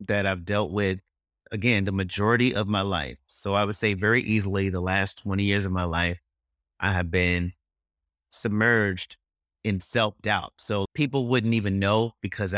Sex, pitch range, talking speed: male, 90-110 Hz, 165 wpm